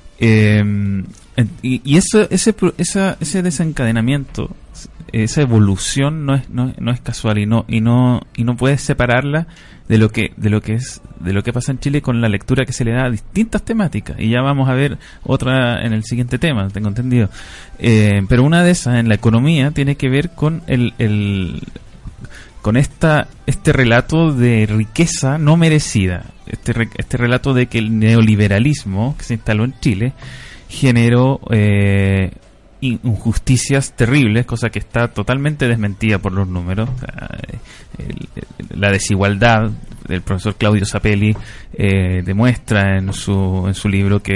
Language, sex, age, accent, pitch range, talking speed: Spanish, male, 20-39, Argentinian, 105-135 Hz, 160 wpm